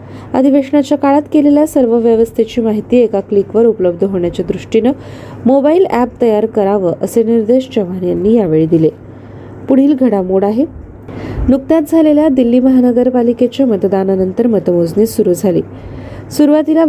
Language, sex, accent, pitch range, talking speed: Marathi, female, native, 195-260 Hz, 90 wpm